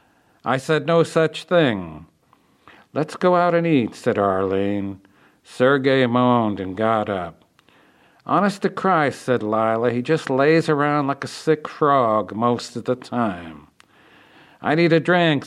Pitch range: 125-155 Hz